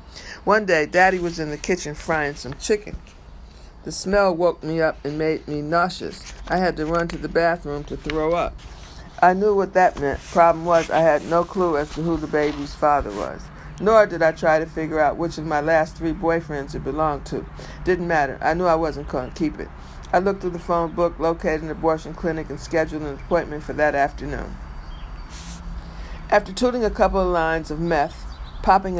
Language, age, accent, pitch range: English, 60-79, American, 150-175 Hz